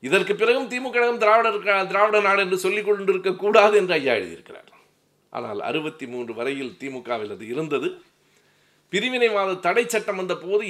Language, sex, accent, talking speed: Tamil, male, native, 120 wpm